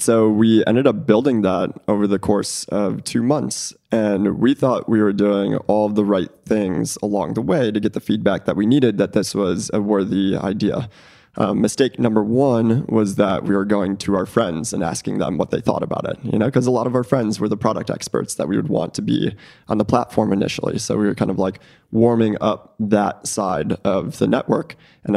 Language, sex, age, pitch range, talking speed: Hebrew, male, 20-39, 100-115 Hz, 225 wpm